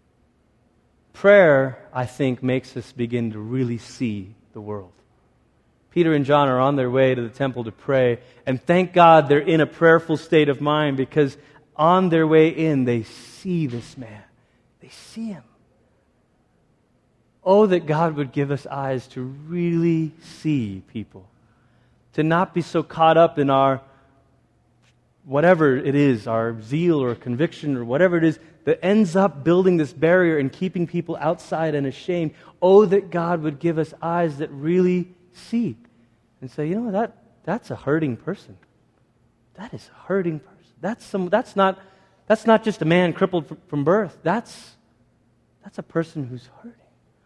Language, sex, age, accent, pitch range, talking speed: English, male, 30-49, American, 125-170 Hz, 165 wpm